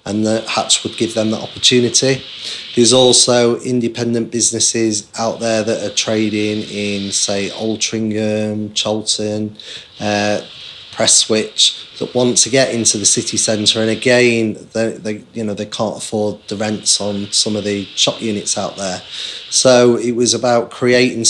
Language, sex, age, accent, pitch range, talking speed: English, male, 20-39, British, 105-115 Hz, 160 wpm